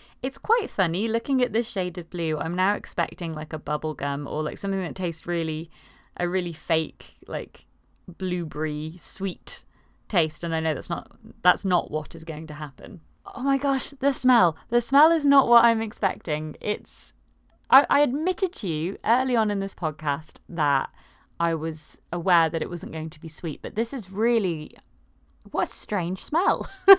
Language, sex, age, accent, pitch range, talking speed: English, female, 30-49, British, 160-225 Hz, 180 wpm